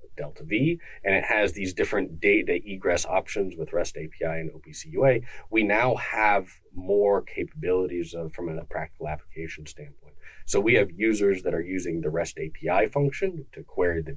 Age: 30-49